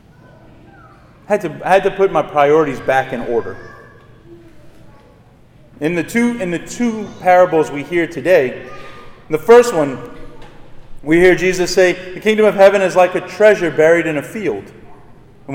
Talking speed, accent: 160 wpm, American